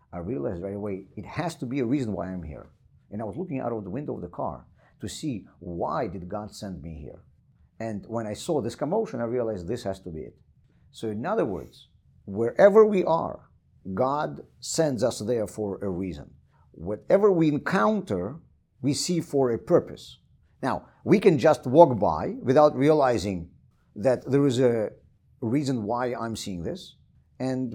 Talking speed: 185 wpm